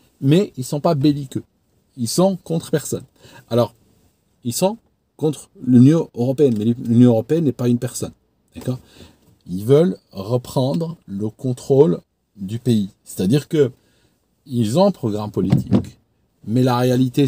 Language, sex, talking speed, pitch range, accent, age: French, male, 140 wpm, 110-145 Hz, French, 50-69